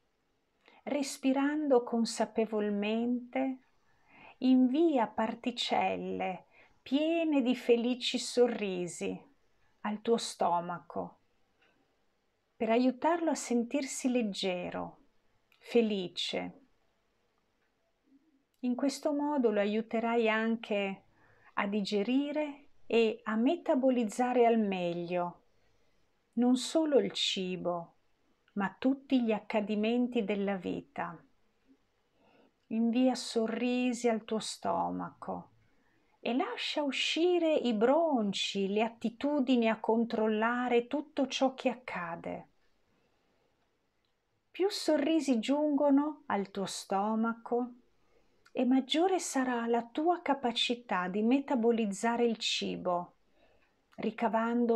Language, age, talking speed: Italian, 50-69, 80 wpm